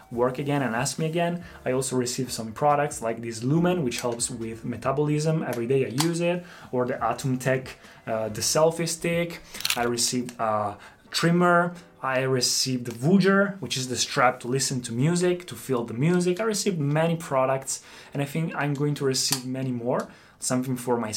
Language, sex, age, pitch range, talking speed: Italian, male, 20-39, 125-155 Hz, 185 wpm